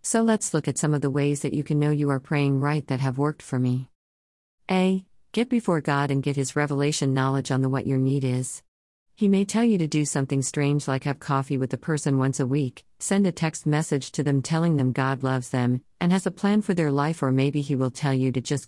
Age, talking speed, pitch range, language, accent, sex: 50-69, 255 wpm, 130-150 Hz, English, American, female